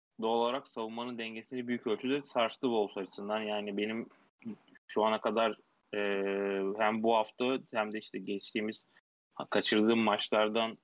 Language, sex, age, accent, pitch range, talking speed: Turkish, male, 20-39, native, 105-120 Hz, 135 wpm